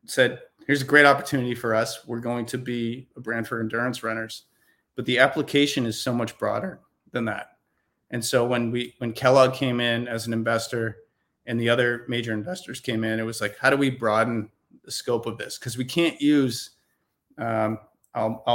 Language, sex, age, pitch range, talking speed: English, male, 30-49, 115-135 Hz, 195 wpm